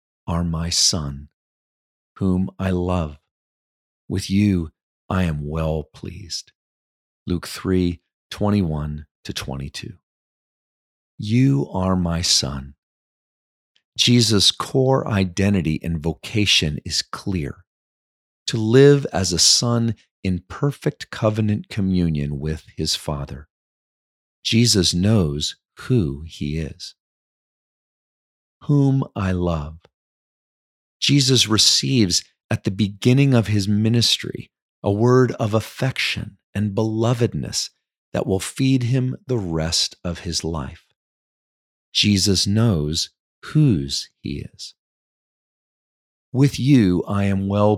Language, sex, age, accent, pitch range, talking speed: English, male, 40-59, American, 80-115 Hz, 100 wpm